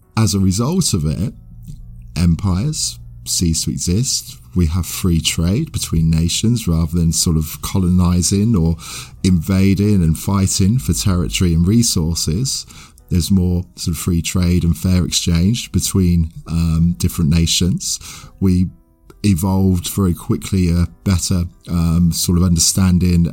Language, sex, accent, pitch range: English, male, British, 85-100 Hz